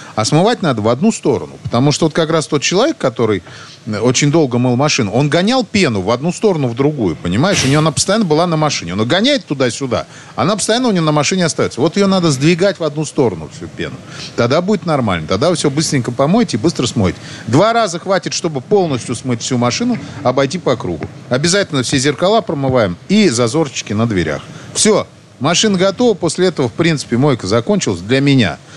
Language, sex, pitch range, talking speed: Russian, male, 120-175 Hz, 195 wpm